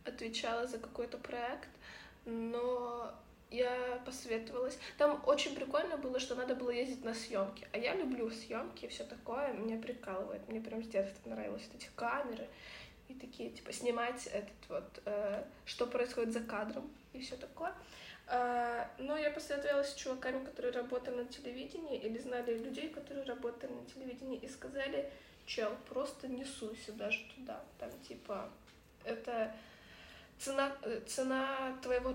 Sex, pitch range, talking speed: female, 225-260 Hz, 145 wpm